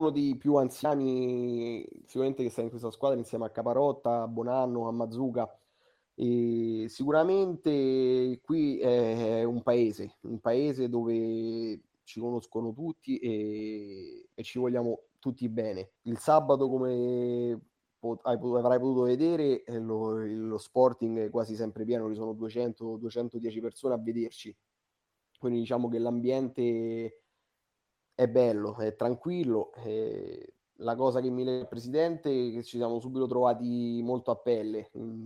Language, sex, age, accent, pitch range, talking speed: Italian, male, 20-39, native, 115-130 Hz, 135 wpm